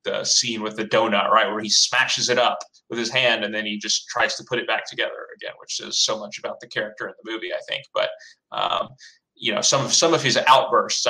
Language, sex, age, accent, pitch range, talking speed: English, male, 20-39, American, 105-155 Hz, 255 wpm